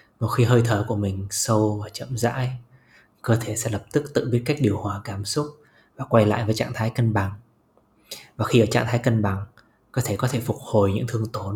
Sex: male